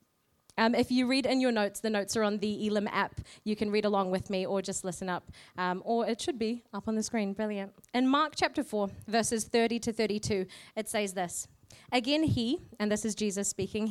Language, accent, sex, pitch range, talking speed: English, Australian, female, 200-245 Hz, 225 wpm